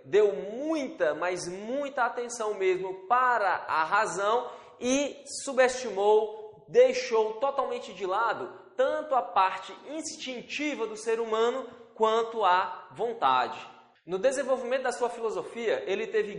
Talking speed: 115 wpm